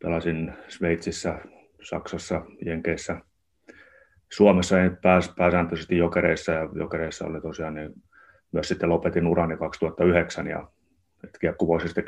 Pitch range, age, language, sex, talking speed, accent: 80-90 Hz, 30-49, Finnish, male, 90 wpm, native